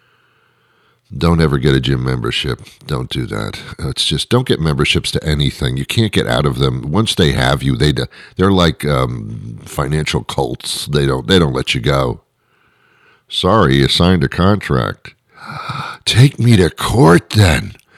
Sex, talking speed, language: male, 165 wpm, English